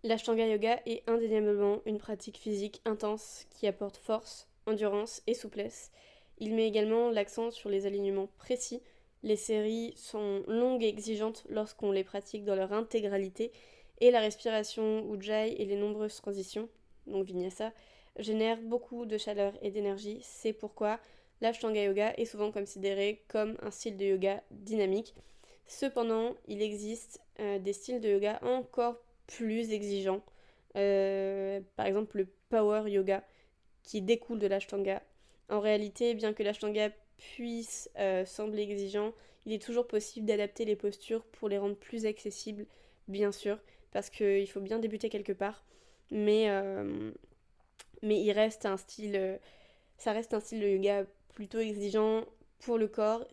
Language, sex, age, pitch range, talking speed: French, female, 20-39, 205-225 Hz, 150 wpm